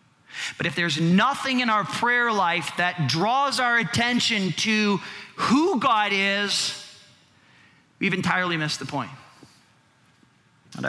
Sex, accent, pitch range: male, American, 145-180 Hz